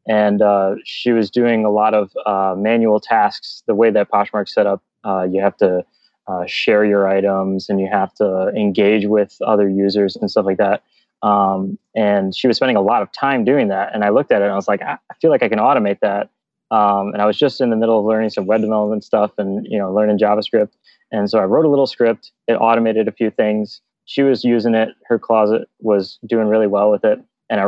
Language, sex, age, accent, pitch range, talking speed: English, male, 20-39, American, 100-115 Hz, 240 wpm